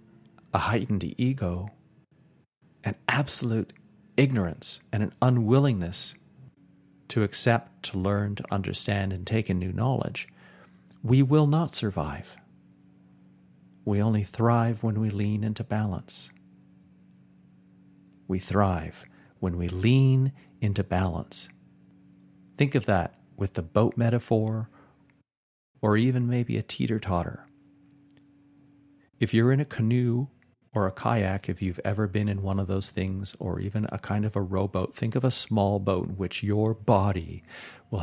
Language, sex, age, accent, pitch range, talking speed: English, male, 50-69, American, 95-115 Hz, 135 wpm